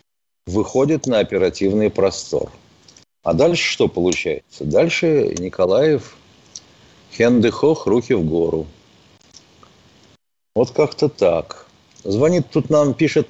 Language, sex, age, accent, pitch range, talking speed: Russian, male, 50-69, native, 115-150 Hz, 100 wpm